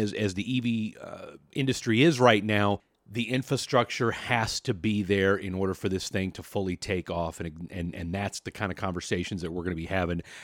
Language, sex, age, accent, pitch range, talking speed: English, male, 40-59, American, 95-115 Hz, 220 wpm